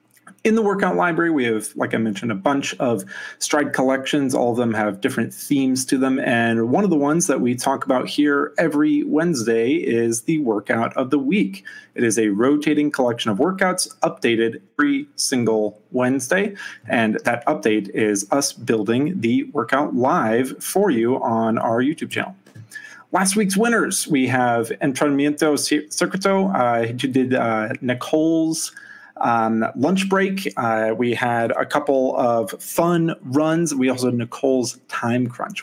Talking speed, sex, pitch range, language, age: 160 wpm, male, 115-170 Hz, English, 30-49